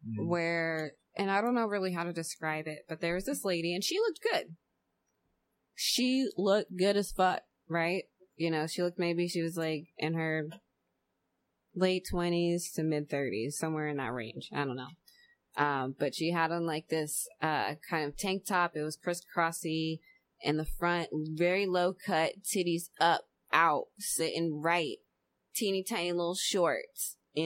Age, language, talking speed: 20-39, English, 165 wpm